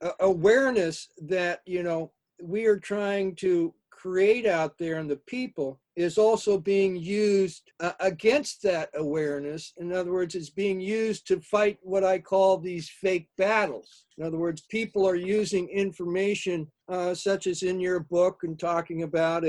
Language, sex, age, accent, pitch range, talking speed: English, male, 50-69, American, 160-195 Hz, 165 wpm